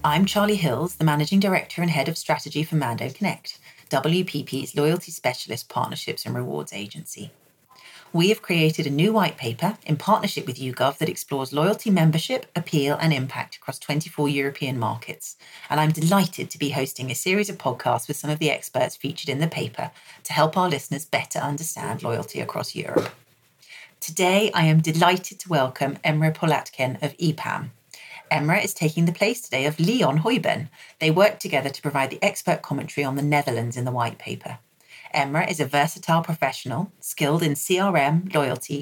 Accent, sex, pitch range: British, female, 140-170 Hz